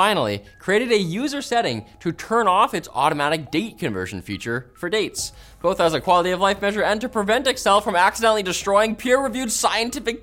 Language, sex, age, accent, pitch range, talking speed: English, male, 20-39, American, 125-200 Hz, 180 wpm